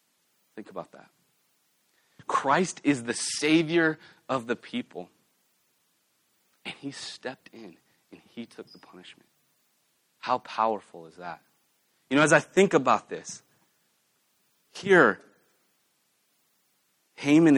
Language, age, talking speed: English, 30-49, 110 wpm